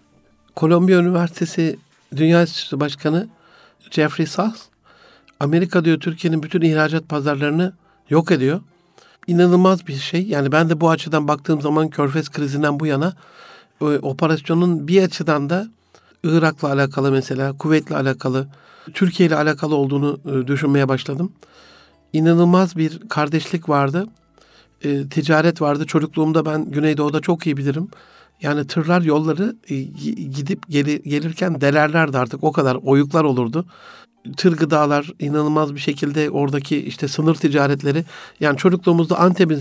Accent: native